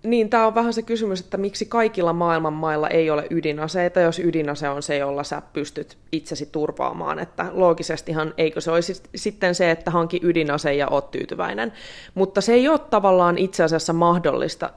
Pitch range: 145-175 Hz